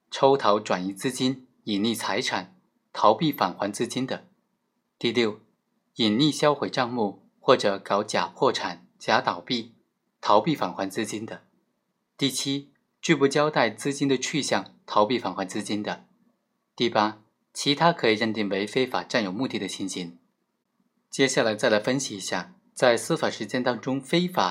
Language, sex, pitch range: Chinese, male, 110-150 Hz